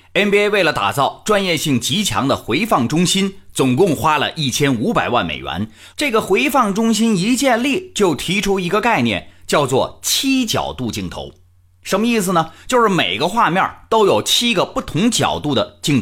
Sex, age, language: male, 30-49, Chinese